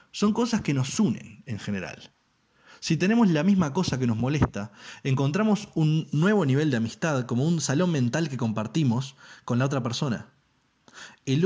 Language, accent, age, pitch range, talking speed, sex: Spanish, Argentinian, 20-39, 130-185 Hz, 170 wpm, male